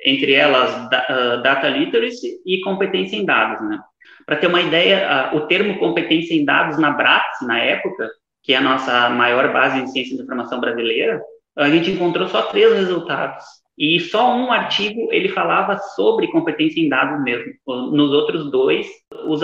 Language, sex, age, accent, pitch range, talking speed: Portuguese, male, 20-39, Brazilian, 155-245 Hz, 165 wpm